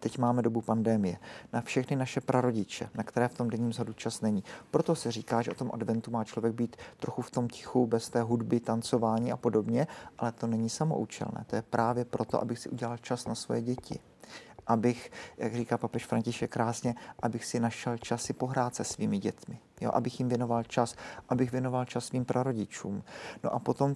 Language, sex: Czech, male